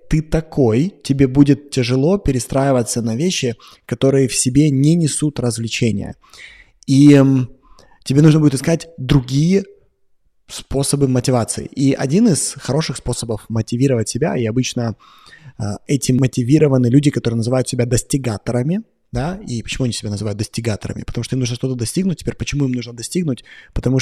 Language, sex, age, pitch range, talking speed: Russian, male, 20-39, 120-145 Hz, 145 wpm